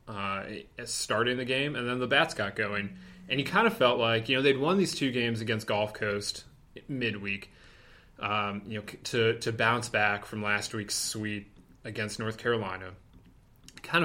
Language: English